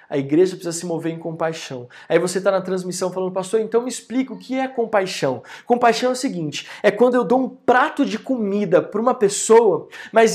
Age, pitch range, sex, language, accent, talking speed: 20-39, 230-300 Hz, male, Portuguese, Brazilian, 215 wpm